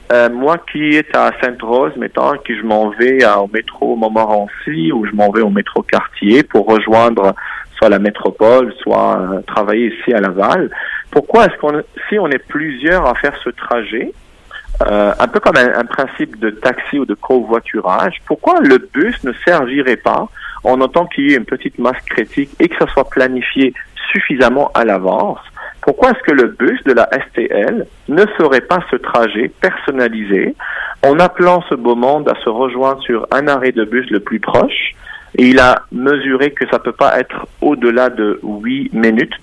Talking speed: 185 wpm